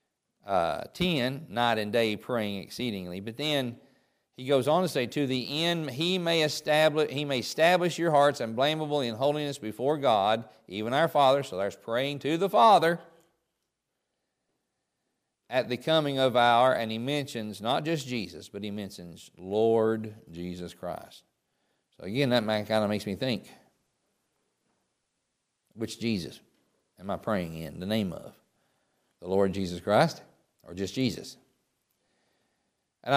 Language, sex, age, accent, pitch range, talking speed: English, male, 50-69, American, 110-140 Hz, 150 wpm